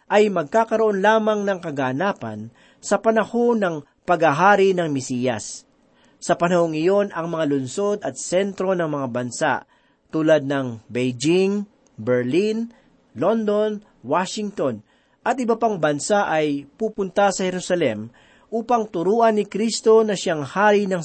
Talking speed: 125 wpm